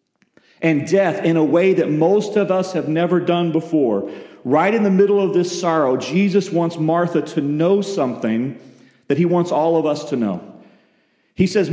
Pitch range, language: 165-230 Hz, English